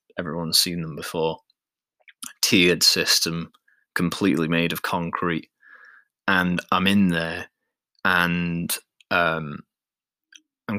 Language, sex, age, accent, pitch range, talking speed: English, male, 20-39, British, 85-95 Hz, 95 wpm